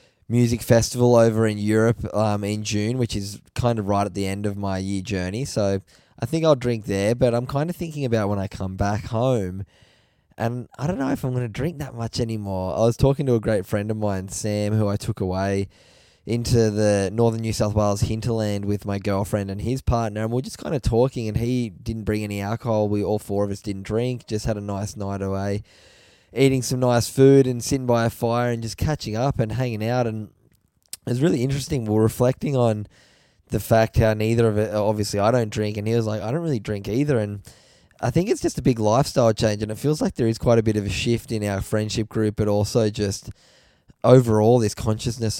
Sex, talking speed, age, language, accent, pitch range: male, 235 wpm, 10-29, English, Australian, 105-125 Hz